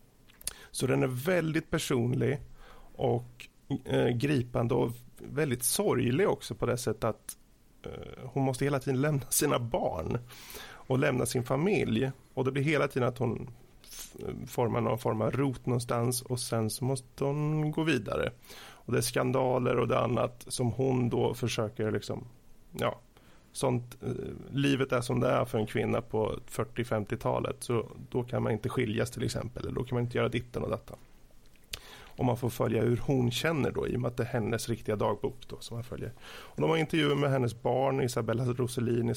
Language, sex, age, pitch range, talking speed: Swedish, male, 30-49, 120-135 Hz, 180 wpm